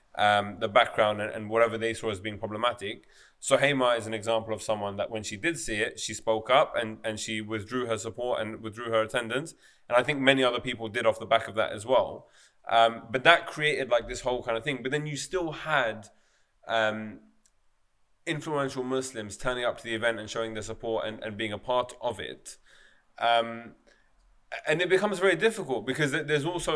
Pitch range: 110-140 Hz